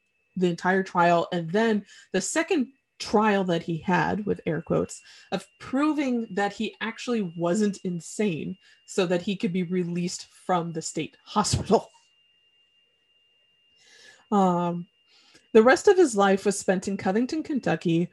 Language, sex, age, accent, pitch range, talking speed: English, female, 20-39, American, 175-240 Hz, 140 wpm